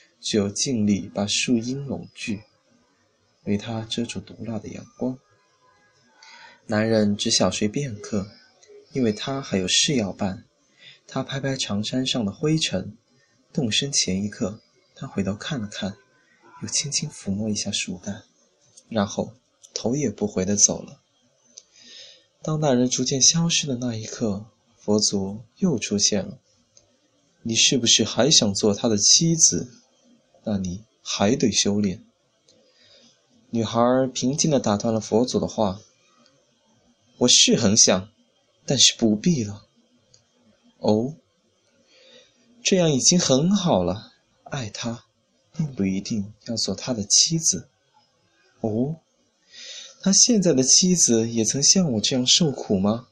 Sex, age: male, 20-39